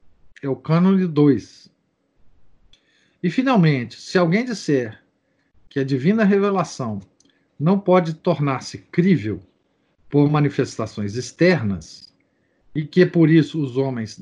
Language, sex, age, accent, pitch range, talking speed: Portuguese, male, 50-69, Brazilian, 125-165 Hz, 110 wpm